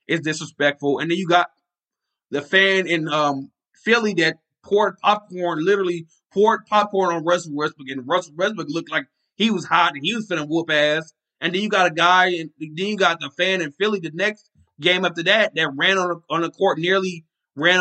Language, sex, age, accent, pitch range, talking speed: English, male, 20-39, American, 155-195 Hz, 205 wpm